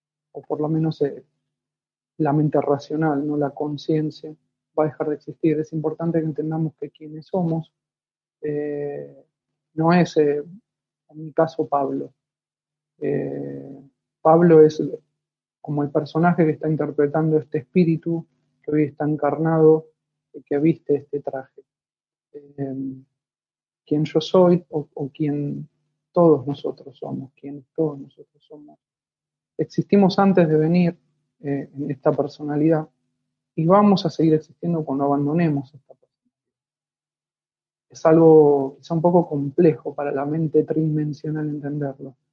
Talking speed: 135 wpm